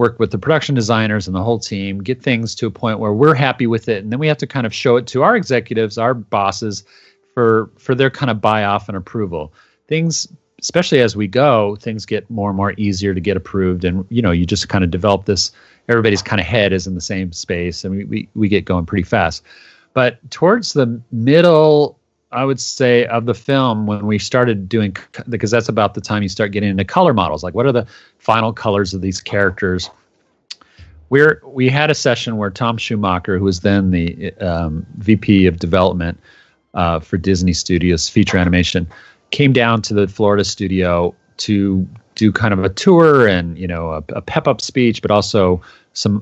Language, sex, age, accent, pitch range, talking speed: English, male, 40-59, American, 95-120 Hz, 210 wpm